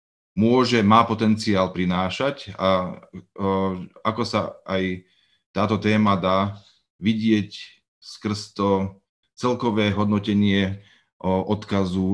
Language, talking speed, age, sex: Slovak, 95 wpm, 30-49, male